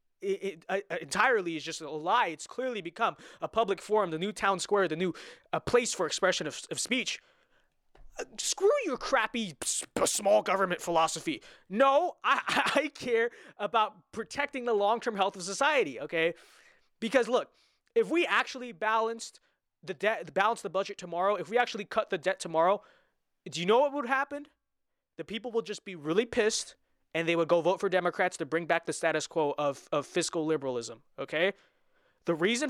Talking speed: 185 wpm